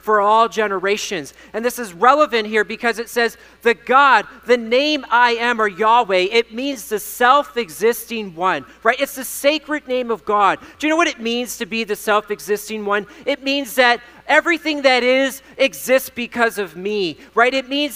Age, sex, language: 30-49, male, English